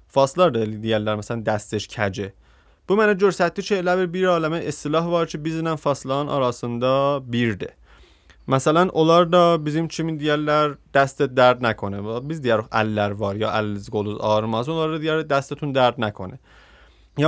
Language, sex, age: Persian, male, 30-49